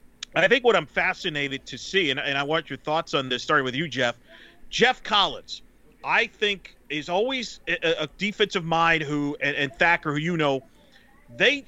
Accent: American